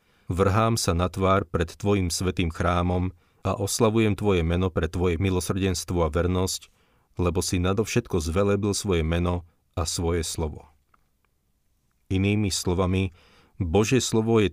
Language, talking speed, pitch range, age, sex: Slovak, 130 wpm, 85-100 Hz, 40-59, male